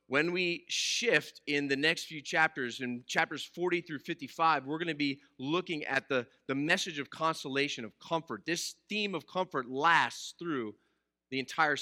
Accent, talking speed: American, 175 wpm